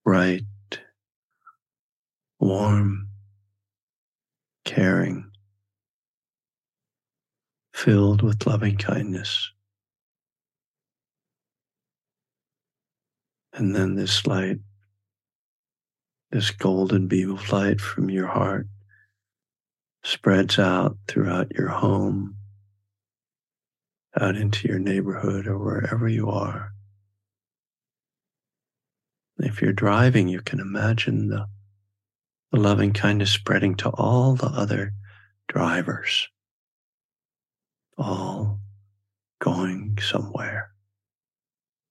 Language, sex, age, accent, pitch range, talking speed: English, male, 60-79, American, 100-110 Hz, 75 wpm